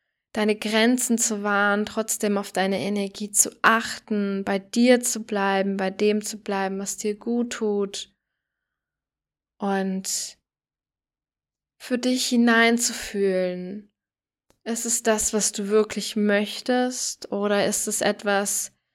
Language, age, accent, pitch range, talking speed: German, 10-29, German, 195-230 Hz, 115 wpm